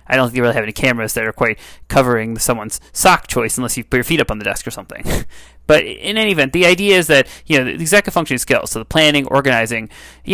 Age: 30-49